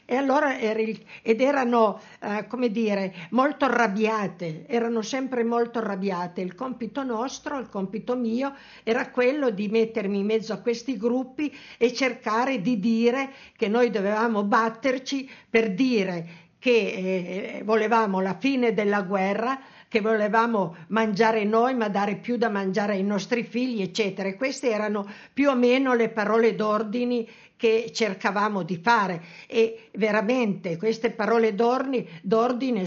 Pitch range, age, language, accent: 205-240 Hz, 50-69, Italian, native